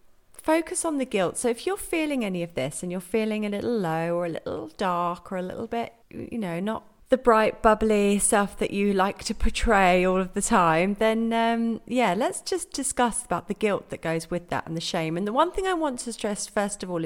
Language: English